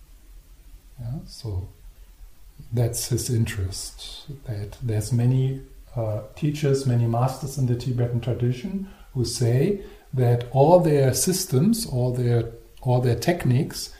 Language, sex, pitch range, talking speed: English, male, 115-140 Hz, 115 wpm